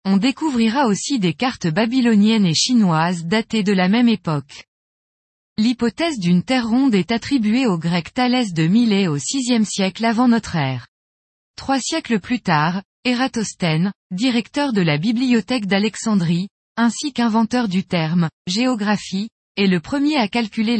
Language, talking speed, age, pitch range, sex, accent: French, 150 wpm, 20-39, 180-250 Hz, female, French